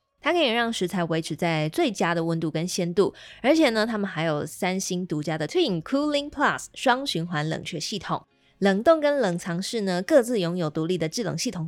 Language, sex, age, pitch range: Chinese, female, 20-39, 160-215 Hz